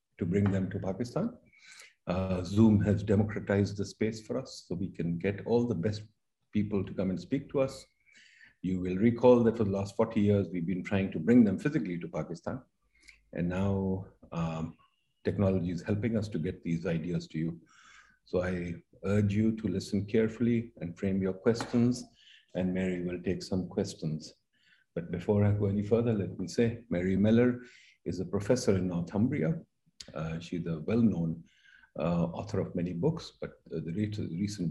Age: 50-69